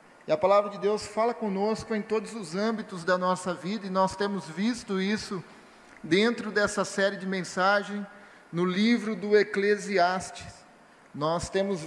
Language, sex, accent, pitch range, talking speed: Portuguese, male, Brazilian, 185-210 Hz, 150 wpm